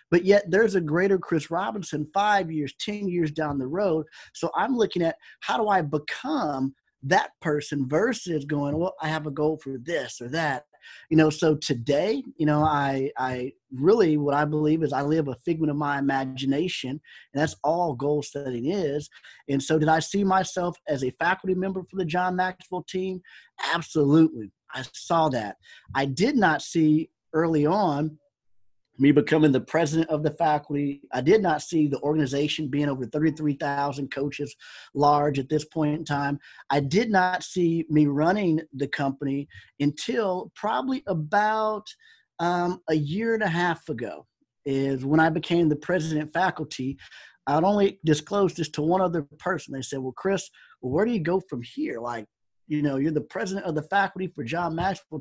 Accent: American